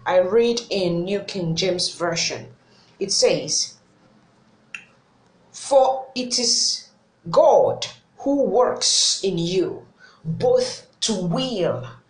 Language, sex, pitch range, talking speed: English, female, 200-310 Hz, 100 wpm